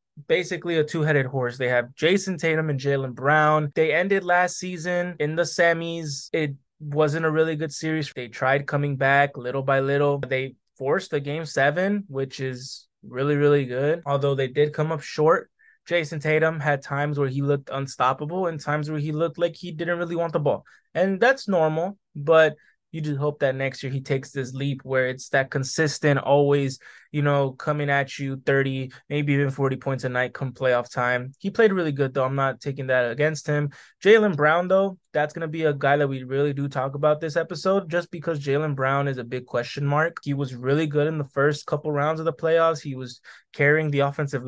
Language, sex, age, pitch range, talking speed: English, male, 20-39, 135-160 Hz, 210 wpm